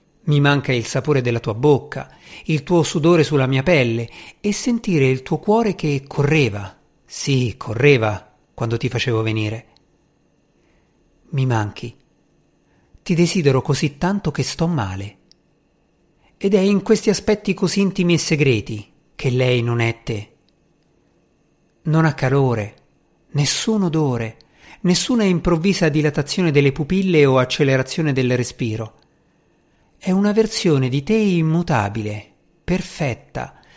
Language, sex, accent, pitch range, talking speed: Italian, male, native, 125-175 Hz, 125 wpm